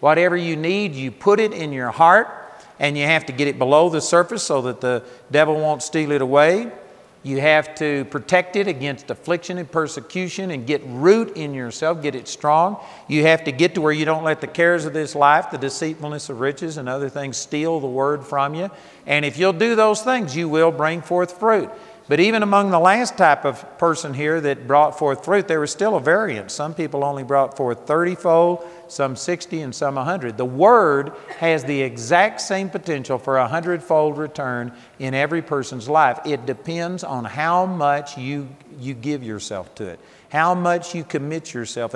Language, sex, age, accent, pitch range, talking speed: English, male, 50-69, American, 140-175 Hz, 205 wpm